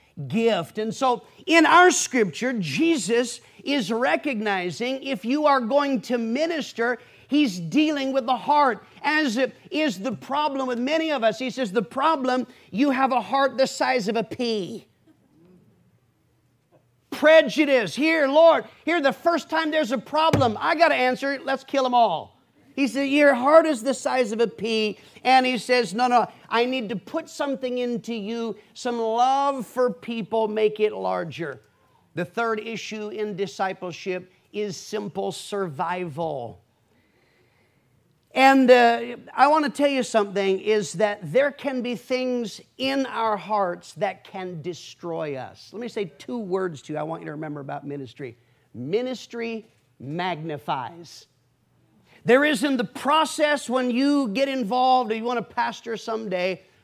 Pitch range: 200-270 Hz